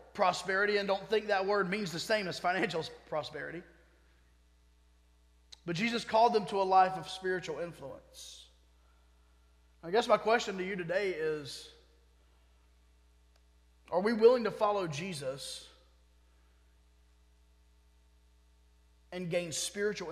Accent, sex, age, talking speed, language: American, male, 30-49, 115 wpm, English